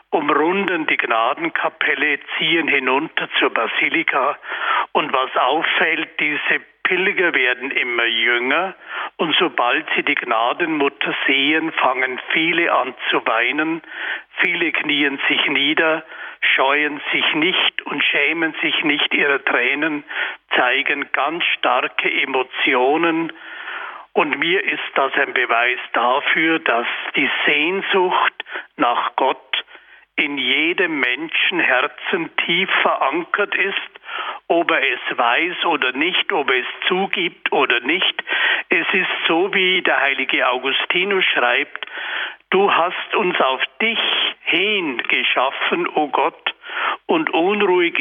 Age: 60-79